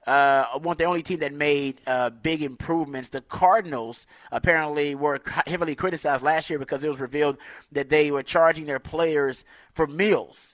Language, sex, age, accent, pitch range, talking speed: English, male, 30-49, American, 130-160 Hz, 175 wpm